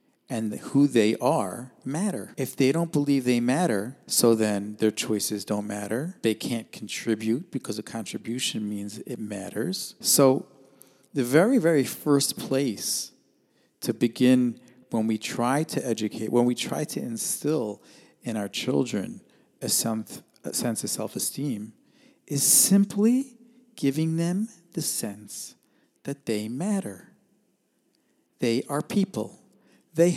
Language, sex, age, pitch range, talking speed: English, male, 50-69, 120-195 Hz, 125 wpm